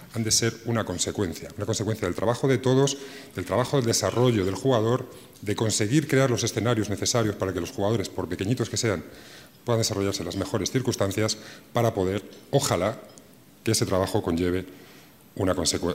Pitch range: 95-120 Hz